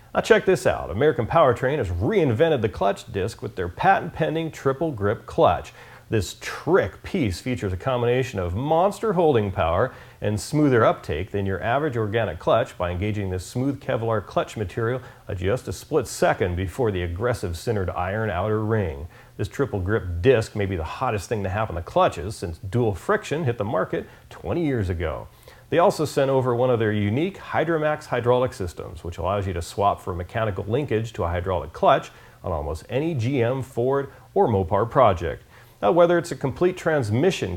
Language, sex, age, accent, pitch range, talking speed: English, male, 40-59, American, 100-135 Hz, 180 wpm